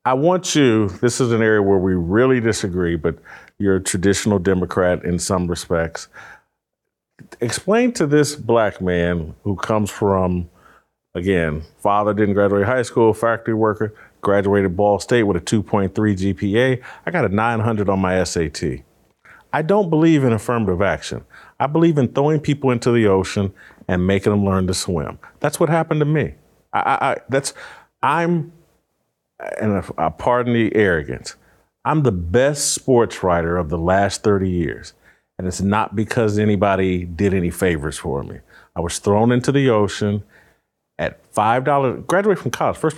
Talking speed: 165 wpm